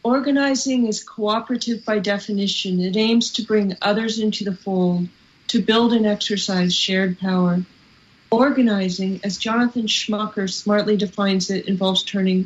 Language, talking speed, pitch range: English, 135 wpm, 190-230 Hz